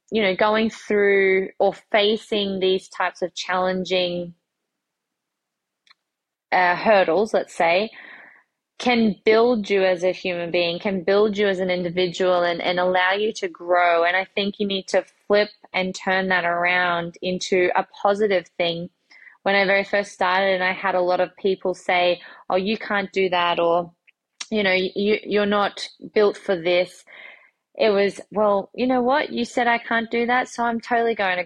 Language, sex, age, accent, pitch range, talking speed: English, female, 20-39, Australian, 185-215 Hz, 175 wpm